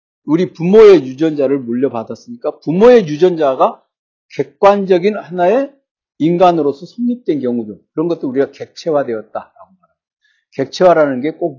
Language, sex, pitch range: Korean, male, 135-205 Hz